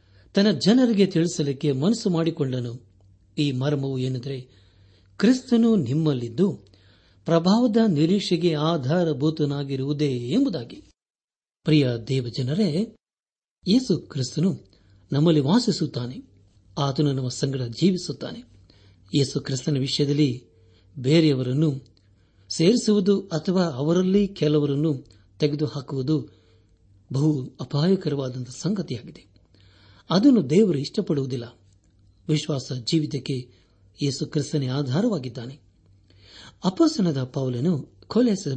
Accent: native